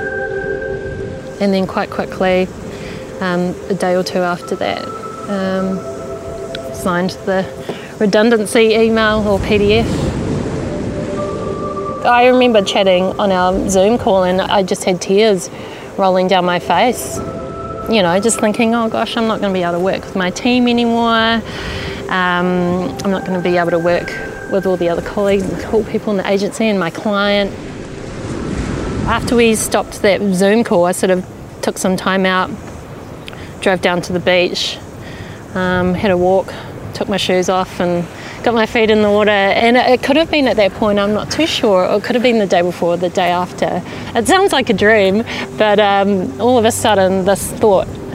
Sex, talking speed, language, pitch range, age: female, 180 wpm, English, 185-220 Hz, 30-49